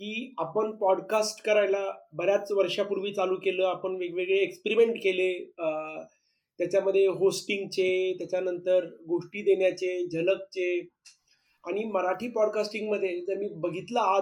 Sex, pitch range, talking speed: male, 190-250 Hz, 105 wpm